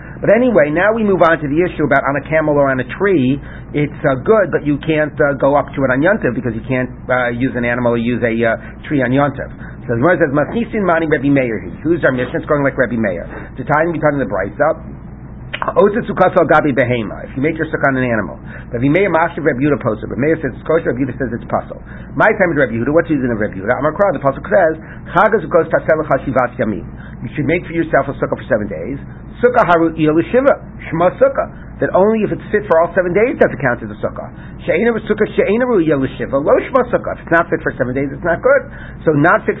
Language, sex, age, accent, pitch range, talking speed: English, male, 50-69, American, 140-175 Hz, 220 wpm